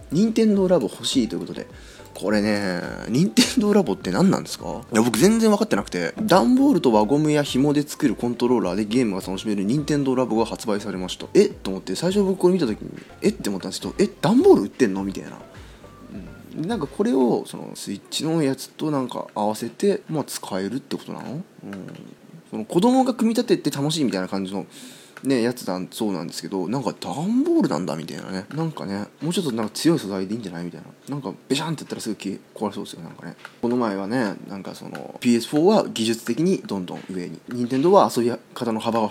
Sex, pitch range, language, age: male, 100-170 Hz, Japanese, 20-39